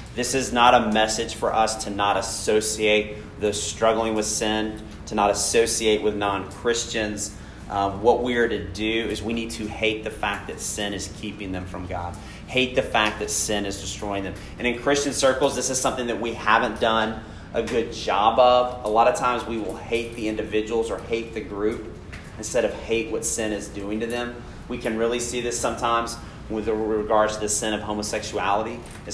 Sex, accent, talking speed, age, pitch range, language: male, American, 200 wpm, 30-49, 105-115 Hz, English